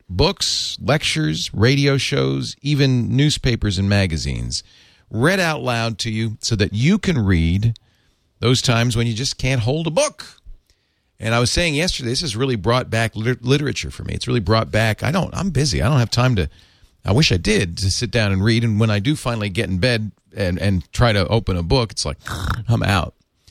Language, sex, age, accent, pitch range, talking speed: English, male, 40-59, American, 95-125 Hz, 210 wpm